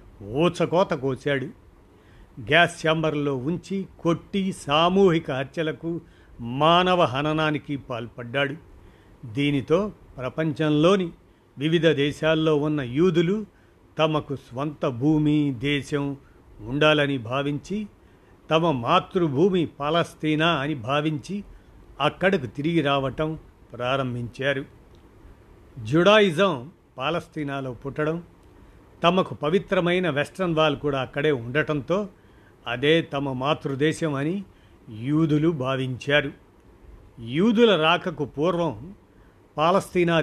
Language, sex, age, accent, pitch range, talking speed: Telugu, male, 50-69, native, 130-165 Hz, 80 wpm